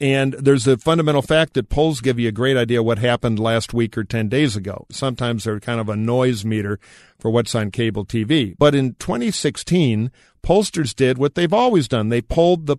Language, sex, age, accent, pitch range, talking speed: English, male, 50-69, American, 110-135 Hz, 210 wpm